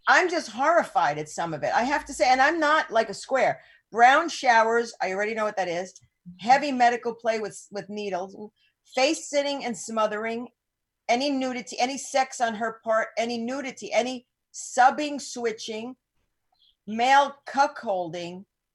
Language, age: English, 50-69